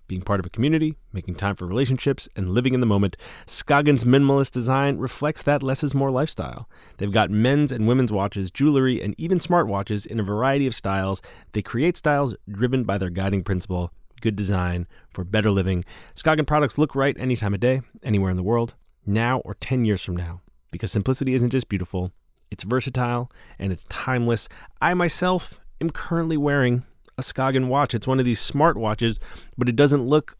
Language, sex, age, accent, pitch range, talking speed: English, male, 30-49, American, 105-140 Hz, 190 wpm